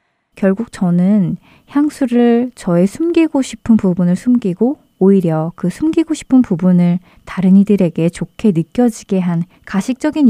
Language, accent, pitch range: Korean, native, 175-235 Hz